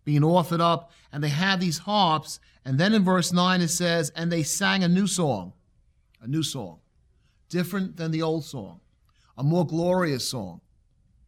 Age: 40-59